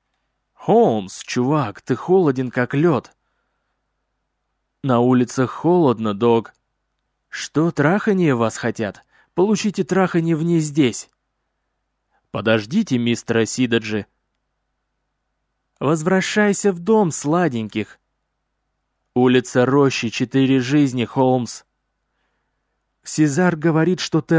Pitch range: 125-175 Hz